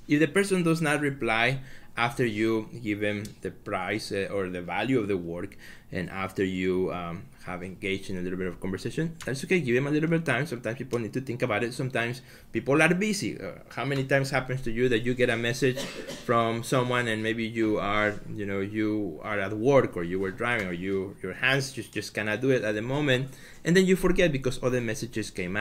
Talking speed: 230 wpm